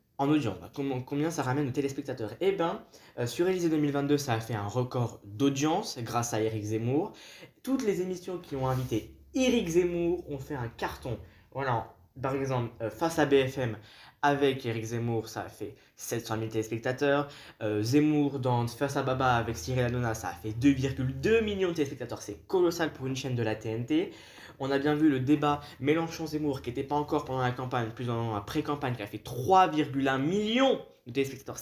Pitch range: 115-150 Hz